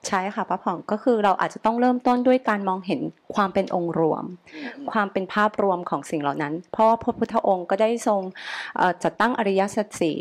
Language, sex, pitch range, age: Thai, female, 180-225 Hz, 30-49